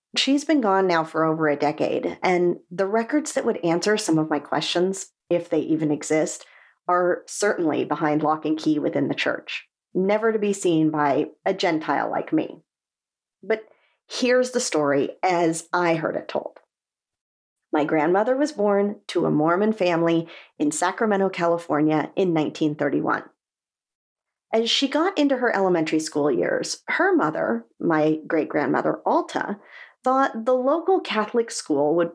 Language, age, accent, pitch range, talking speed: English, 40-59, American, 160-230 Hz, 150 wpm